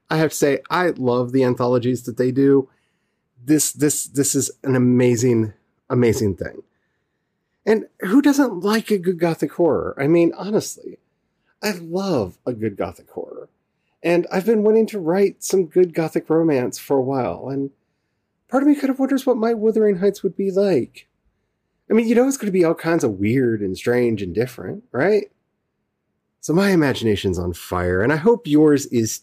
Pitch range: 100-170 Hz